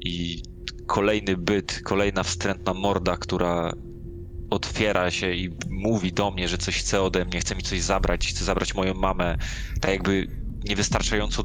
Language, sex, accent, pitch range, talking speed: Polish, male, native, 90-100 Hz, 150 wpm